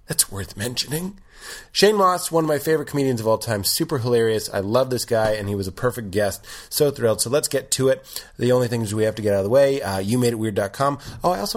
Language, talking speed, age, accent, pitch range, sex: English, 250 wpm, 30-49, American, 95-115 Hz, male